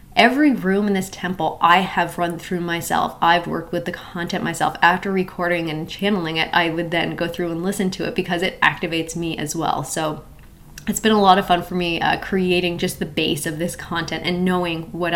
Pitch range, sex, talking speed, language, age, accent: 170-190 Hz, female, 220 wpm, English, 20-39, American